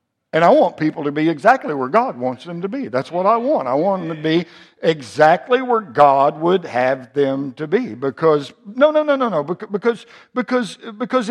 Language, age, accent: English, 60-79, American